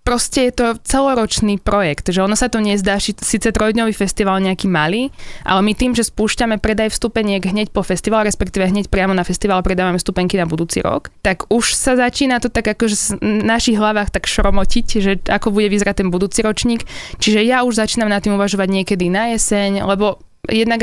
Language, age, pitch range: Slovak, 20-39, 190-215 Hz